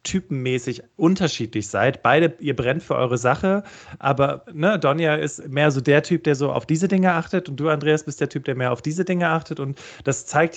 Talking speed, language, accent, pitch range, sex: 210 wpm, German, German, 135-165 Hz, male